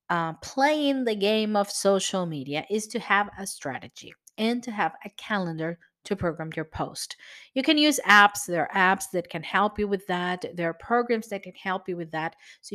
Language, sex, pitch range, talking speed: English, female, 180-235 Hz, 205 wpm